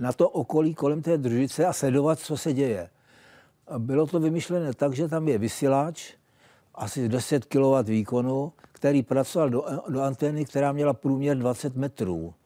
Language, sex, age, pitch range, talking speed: Czech, male, 60-79, 125-160 Hz, 160 wpm